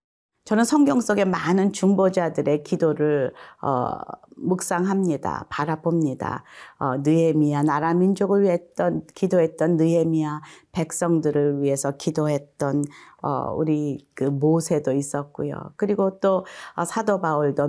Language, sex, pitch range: Korean, female, 160-200 Hz